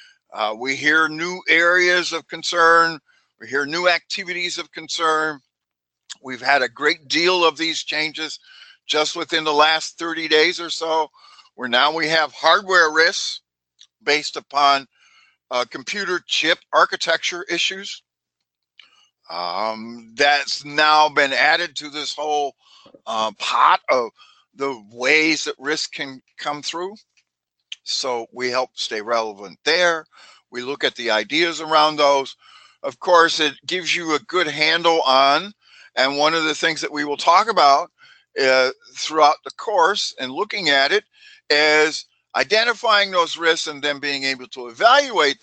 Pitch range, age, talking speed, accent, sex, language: 140-170 Hz, 50-69, 145 wpm, American, male, English